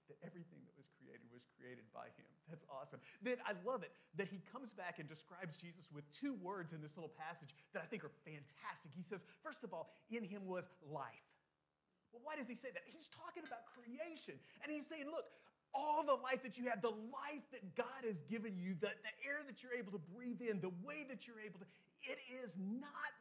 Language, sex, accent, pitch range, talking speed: English, male, American, 150-235 Hz, 230 wpm